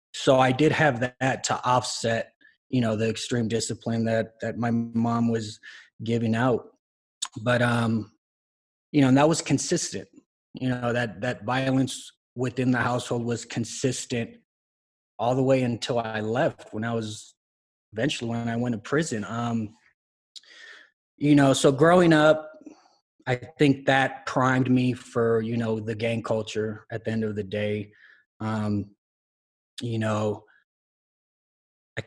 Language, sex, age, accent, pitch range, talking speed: English, male, 30-49, American, 115-135 Hz, 150 wpm